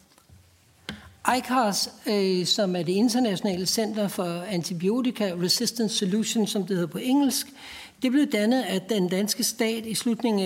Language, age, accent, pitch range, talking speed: Danish, 60-79, native, 190-230 Hz, 140 wpm